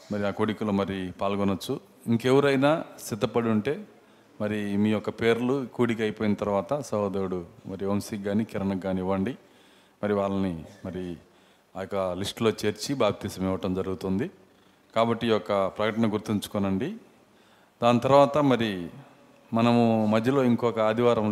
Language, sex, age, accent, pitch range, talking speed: Telugu, male, 40-59, native, 100-125 Hz, 115 wpm